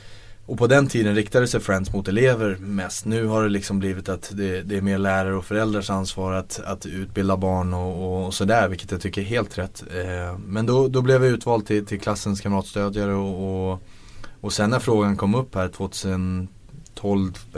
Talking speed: 190 wpm